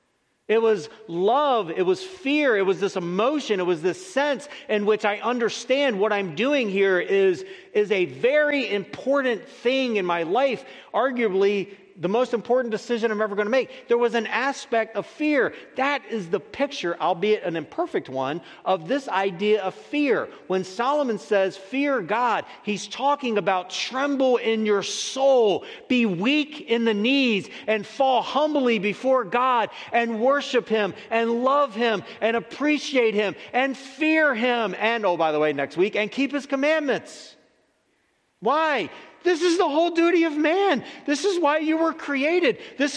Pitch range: 200-285 Hz